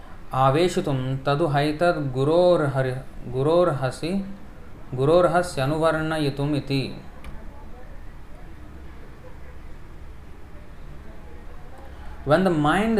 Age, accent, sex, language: 30-49, Indian, male, English